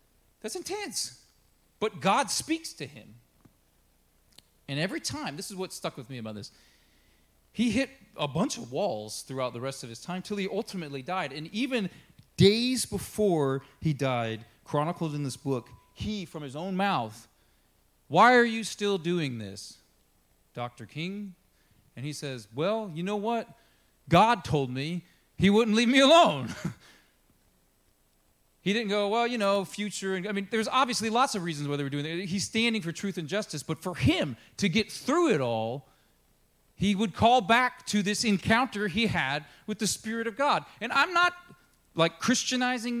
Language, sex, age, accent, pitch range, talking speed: English, male, 30-49, American, 140-225 Hz, 175 wpm